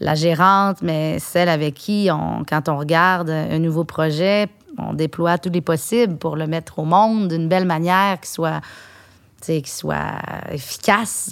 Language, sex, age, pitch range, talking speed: French, female, 30-49, 160-195 Hz, 165 wpm